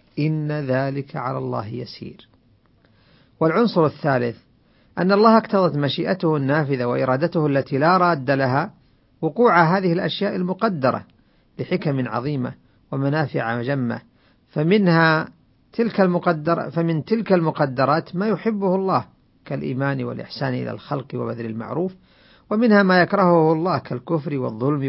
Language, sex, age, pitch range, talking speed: Arabic, male, 50-69, 125-170 Hz, 110 wpm